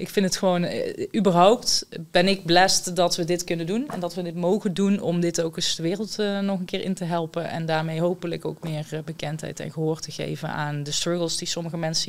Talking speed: 240 wpm